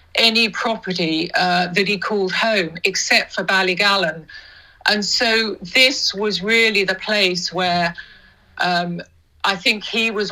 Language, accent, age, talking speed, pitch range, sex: English, British, 50-69, 135 wpm, 180-225 Hz, female